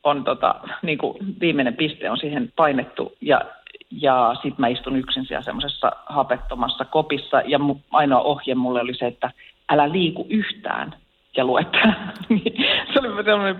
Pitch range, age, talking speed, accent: 135-190 Hz, 40-59, 150 wpm, native